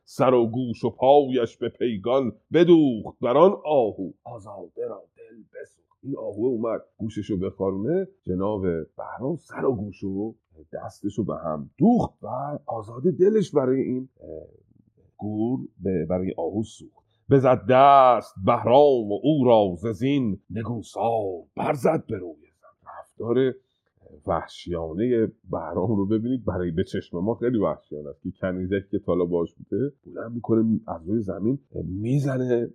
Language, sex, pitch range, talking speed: Persian, male, 95-135 Hz, 140 wpm